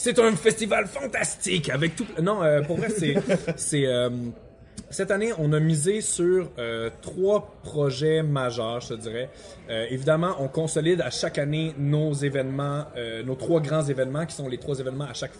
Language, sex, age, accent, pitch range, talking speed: French, male, 20-39, Canadian, 125-155 Hz, 165 wpm